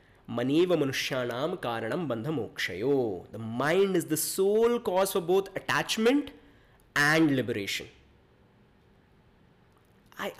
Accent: Indian